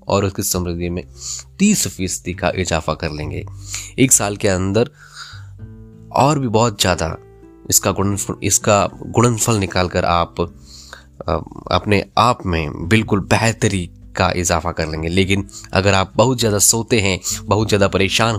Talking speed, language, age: 135 wpm, Hindi, 20-39